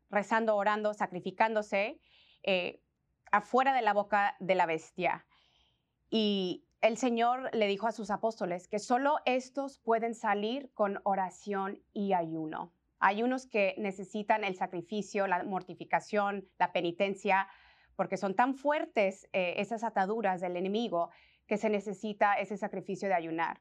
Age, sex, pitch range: 30-49, female, 190-230 Hz